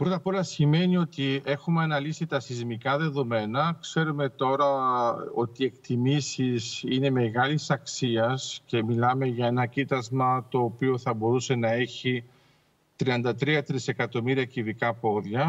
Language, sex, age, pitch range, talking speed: Greek, male, 50-69, 125-150 Hz, 130 wpm